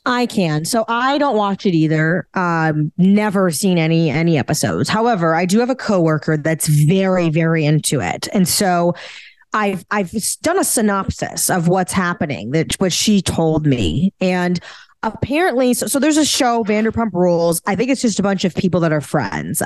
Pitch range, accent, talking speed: 165-225 Hz, American, 185 wpm